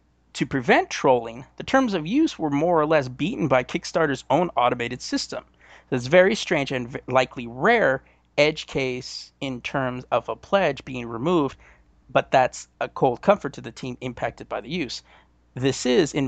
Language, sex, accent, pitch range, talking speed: English, male, American, 120-155 Hz, 175 wpm